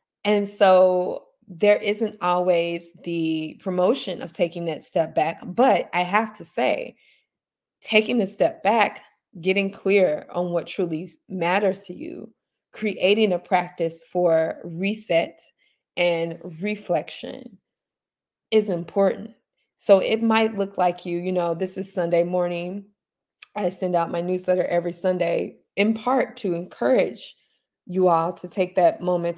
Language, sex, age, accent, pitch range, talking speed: English, female, 20-39, American, 170-200 Hz, 135 wpm